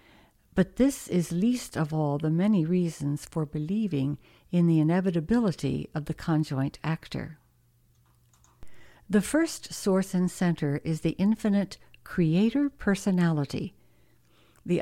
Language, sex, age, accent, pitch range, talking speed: English, female, 60-79, American, 160-205 Hz, 115 wpm